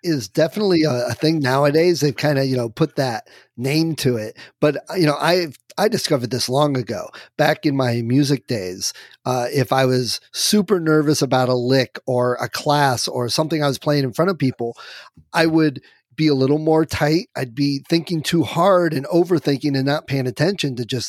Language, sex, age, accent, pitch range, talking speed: English, male, 40-59, American, 135-170 Hz, 200 wpm